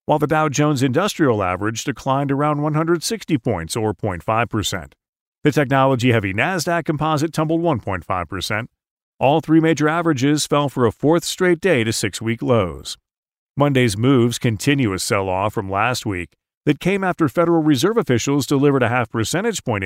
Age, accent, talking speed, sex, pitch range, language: 40-59, American, 145 wpm, male, 110-155 Hz, English